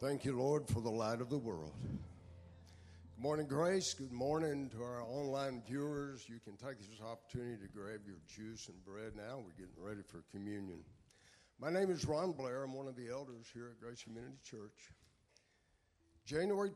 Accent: American